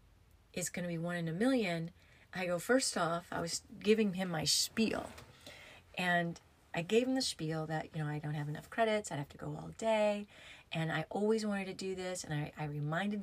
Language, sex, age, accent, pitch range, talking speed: English, female, 30-49, American, 160-210 Hz, 220 wpm